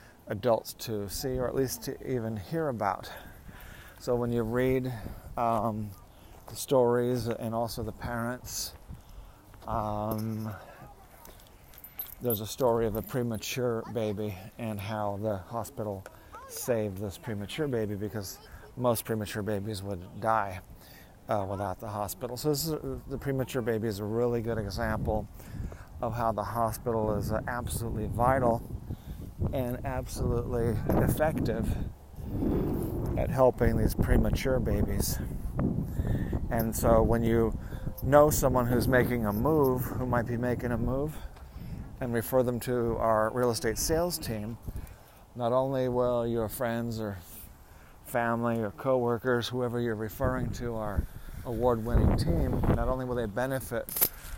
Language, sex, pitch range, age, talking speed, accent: English, male, 105-120 Hz, 40-59, 130 wpm, American